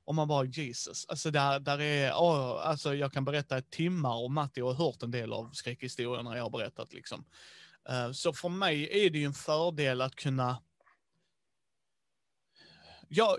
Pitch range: 135-165 Hz